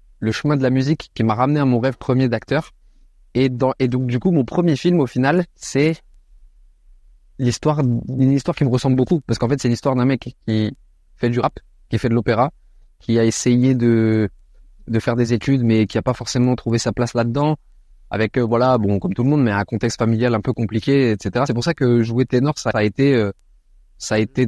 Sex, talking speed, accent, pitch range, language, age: male, 230 wpm, French, 110-130 Hz, French, 20-39